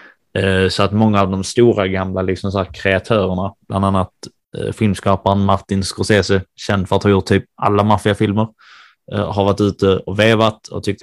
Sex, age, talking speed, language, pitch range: male, 20-39, 185 wpm, Swedish, 95-110 Hz